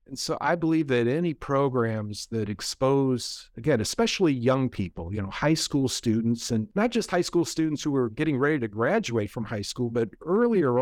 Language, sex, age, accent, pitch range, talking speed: English, male, 50-69, American, 115-145 Hz, 195 wpm